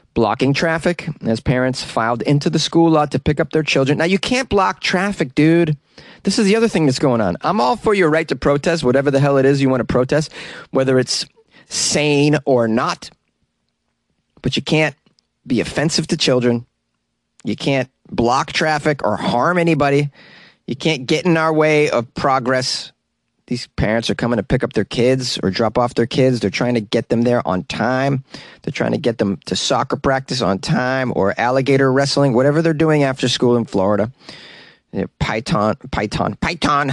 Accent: American